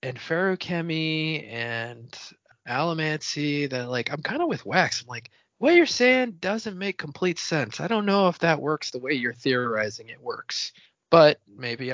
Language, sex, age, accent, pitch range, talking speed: English, male, 20-39, American, 115-155 Hz, 170 wpm